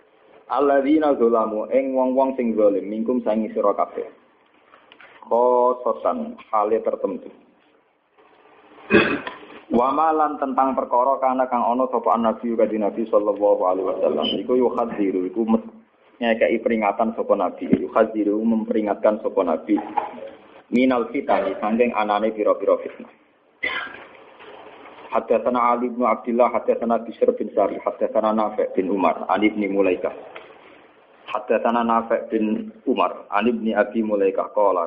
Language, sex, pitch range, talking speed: Malay, male, 110-145 Hz, 125 wpm